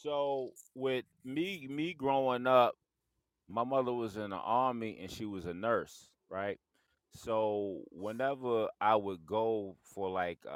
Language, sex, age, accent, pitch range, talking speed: English, male, 30-49, American, 95-120 Hz, 140 wpm